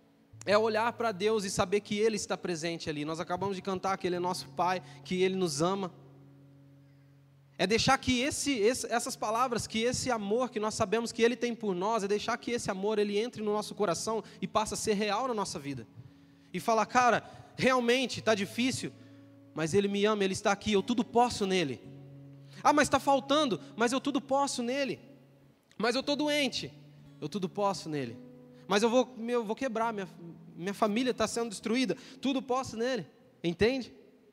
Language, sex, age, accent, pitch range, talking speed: Portuguese, male, 20-39, Brazilian, 140-225 Hz, 190 wpm